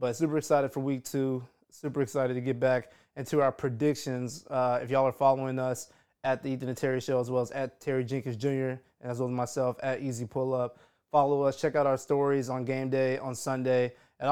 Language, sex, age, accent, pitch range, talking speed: English, male, 20-39, American, 125-145 Hz, 225 wpm